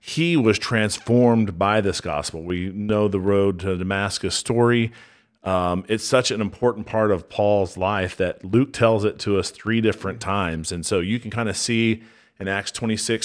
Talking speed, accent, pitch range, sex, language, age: 185 wpm, American, 95-110 Hz, male, English, 40-59